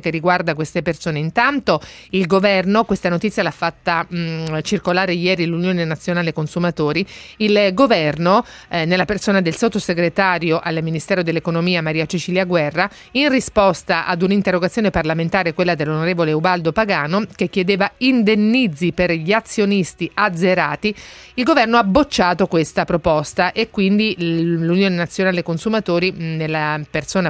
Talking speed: 130 wpm